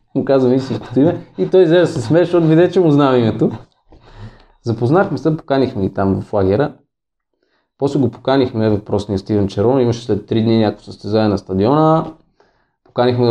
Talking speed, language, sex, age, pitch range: 160 wpm, Bulgarian, male, 30-49, 110-170 Hz